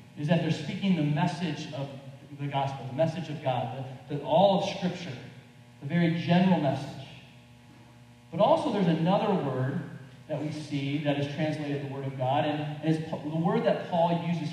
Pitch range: 135-175 Hz